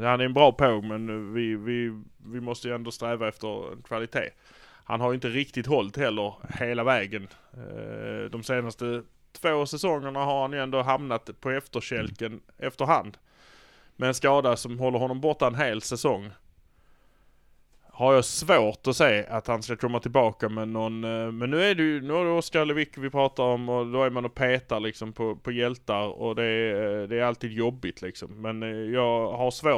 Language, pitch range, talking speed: Swedish, 110-135 Hz, 185 wpm